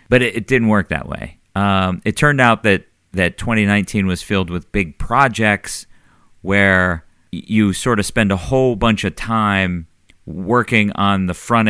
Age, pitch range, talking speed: 40-59, 90-115 Hz, 165 wpm